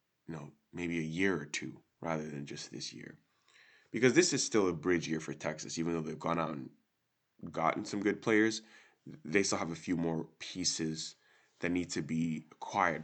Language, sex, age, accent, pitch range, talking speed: English, male, 20-39, American, 80-90 Hz, 200 wpm